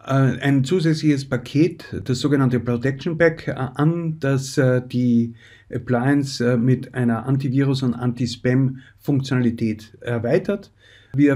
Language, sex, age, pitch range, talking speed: German, male, 50-69, 120-140 Hz, 95 wpm